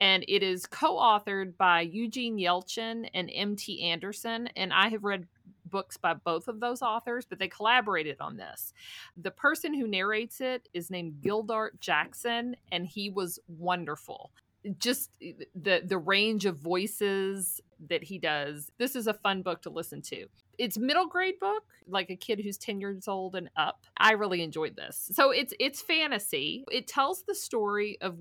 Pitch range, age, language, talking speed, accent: 180-230 Hz, 40-59, English, 170 wpm, American